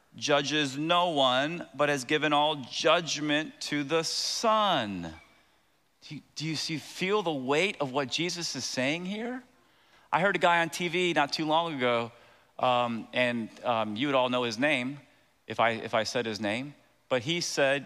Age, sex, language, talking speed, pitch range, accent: 40-59, male, English, 180 wpm, 140-190 Hz, American